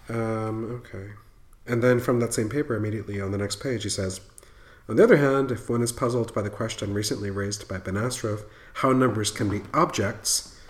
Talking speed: 195 wpm